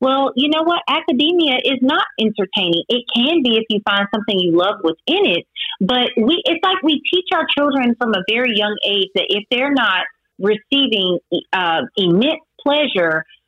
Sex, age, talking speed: female, 40-59, 180 wpm